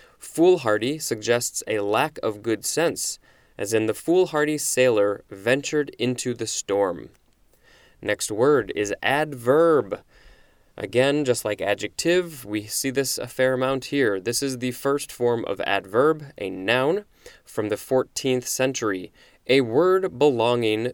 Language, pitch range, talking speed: English, 115-150 Hz, 135 wpm